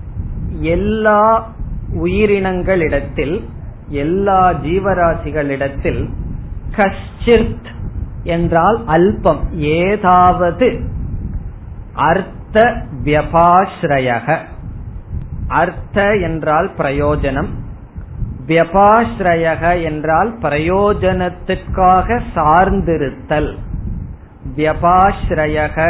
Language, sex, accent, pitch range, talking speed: Tamil, male, native, 145-190 Hz, 40 wpm